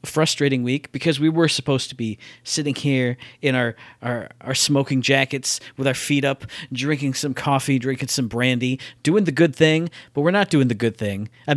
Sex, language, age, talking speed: male, English, 40-59, 195 wpm